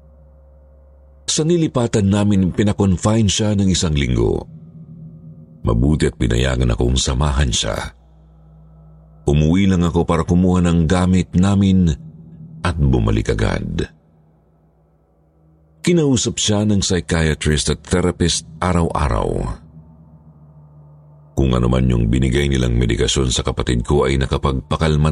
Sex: male